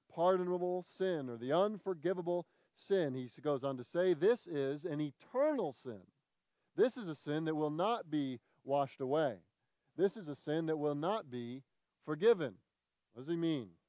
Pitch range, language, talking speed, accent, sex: 140-190 Hz, English, 170 wpm, American, male